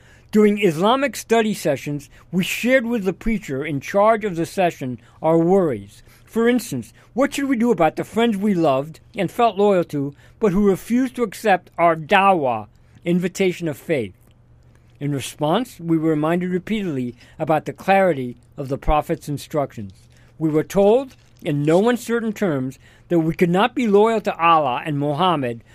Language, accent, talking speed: English, American, 165 wpm